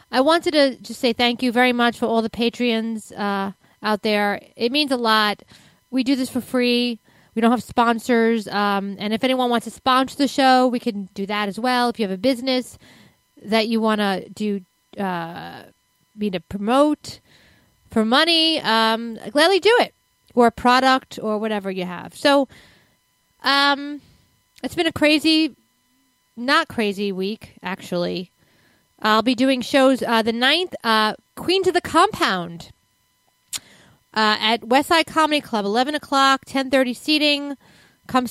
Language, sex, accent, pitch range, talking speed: English, female, American, 210-260 Hz, 160 wpm